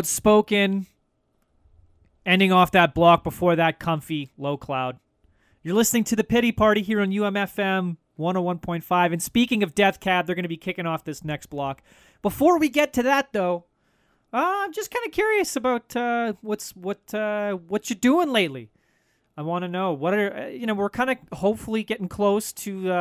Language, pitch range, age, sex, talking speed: English, 150-215 Hz, 30-49, male, 185 wpm